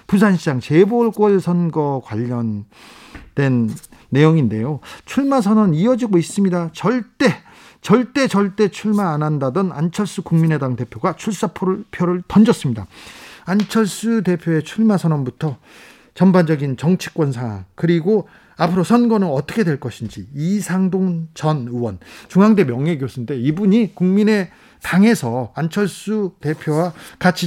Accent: native